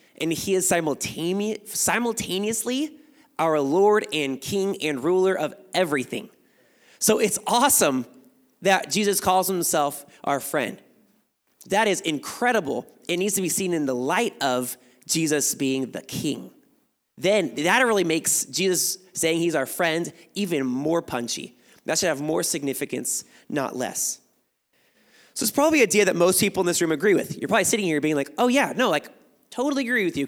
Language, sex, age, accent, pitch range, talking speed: English, male, 20-39, American, 145-210 Hz, 165 wpm